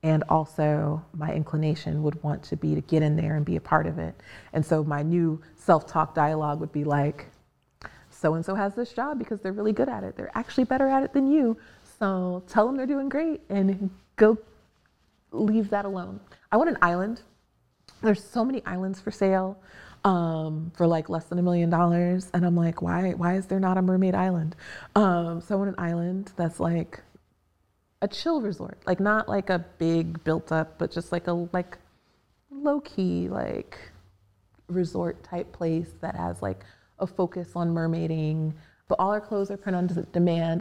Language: English